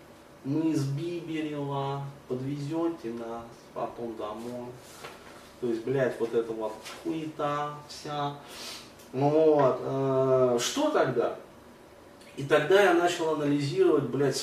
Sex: male